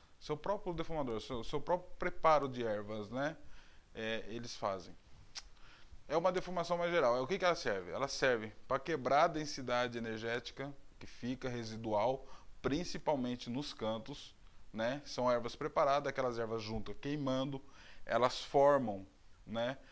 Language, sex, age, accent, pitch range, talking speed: Portuguese, male, 20-39, Brazilian, 115-155 Hz, 140 wpm